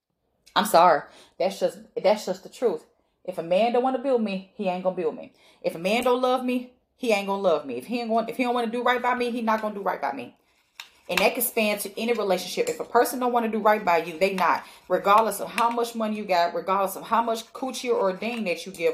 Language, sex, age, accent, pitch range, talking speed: English, female, 30-49, American, 185-225 Hz, 275 wpm